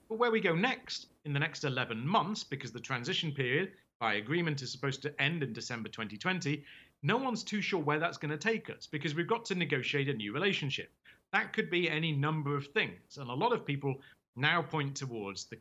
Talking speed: 220 wpm